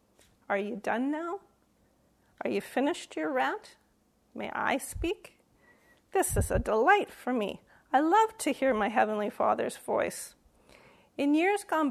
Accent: American